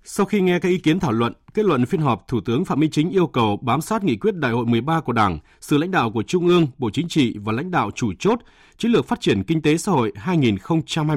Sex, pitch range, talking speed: male, 115-160 Hz, 270 wpm